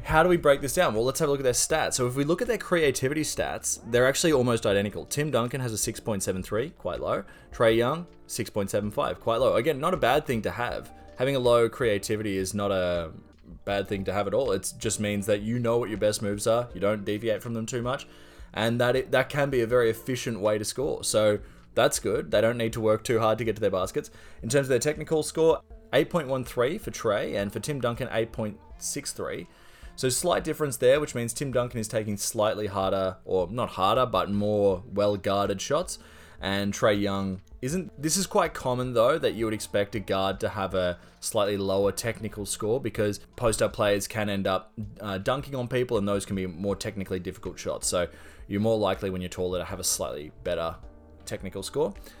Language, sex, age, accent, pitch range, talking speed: English, male, 20-39, Australian, 95-125 Hz, 220 wpm